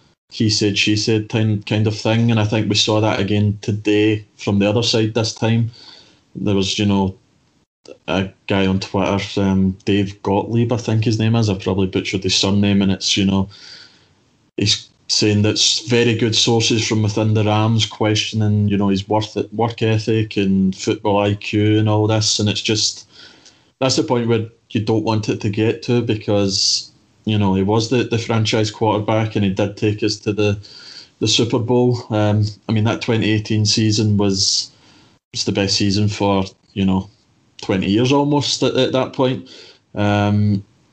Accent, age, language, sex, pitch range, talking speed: British, 20-39, English, male, 100-110 Hz, 185 wpm